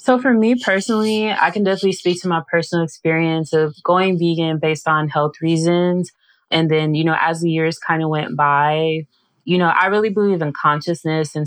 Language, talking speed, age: English, 200 wpm, 20-39